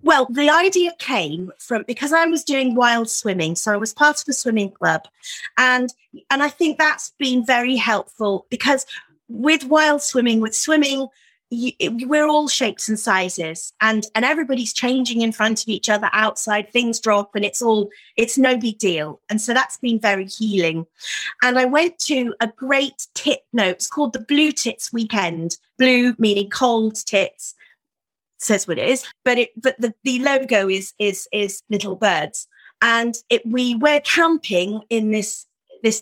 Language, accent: English, British